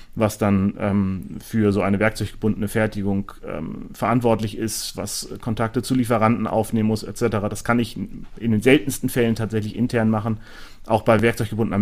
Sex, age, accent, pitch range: male, 30-49, German, 105-115 Hz